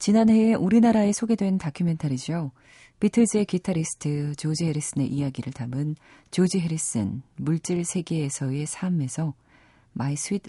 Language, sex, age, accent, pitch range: Korean, female, 40-59, native, 135-195 Hz